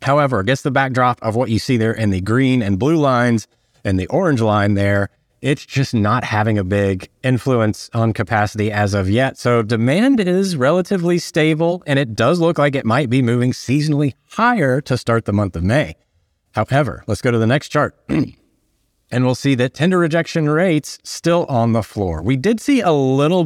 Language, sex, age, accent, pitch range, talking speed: English, male, 30-49, American, 110-145 Hz, 195 wpm